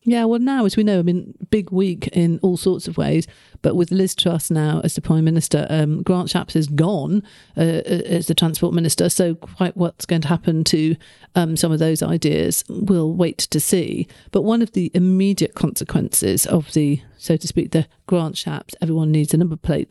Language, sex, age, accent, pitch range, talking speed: English, female, 50-69, British, 155-180 Hz, 210 wpm